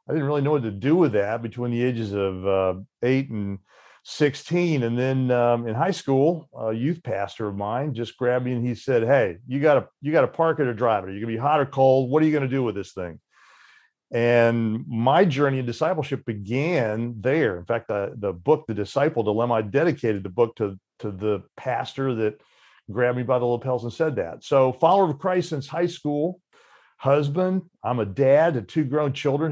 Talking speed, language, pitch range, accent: 220 wpm, English, 110-140 Hz, American